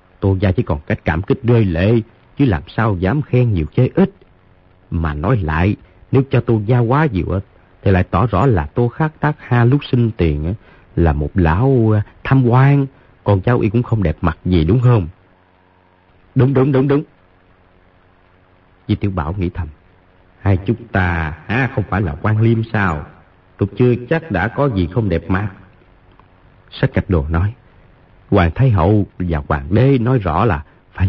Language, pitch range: Vietnamese, 90-120 Hz